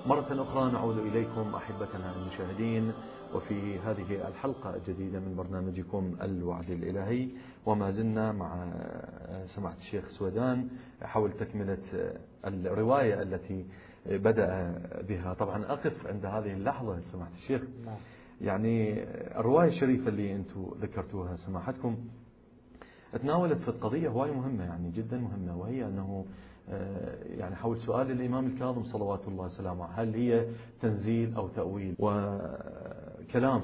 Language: Arabic